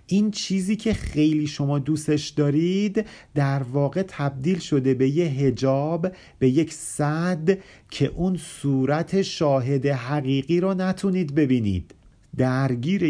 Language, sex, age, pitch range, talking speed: Persian, male, 40-59, 130-180 Hz, 120 wpm